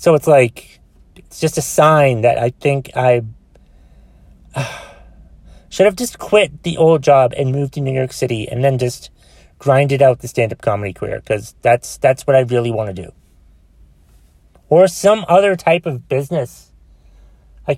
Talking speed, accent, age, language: 170 wpm, American, 30-49, English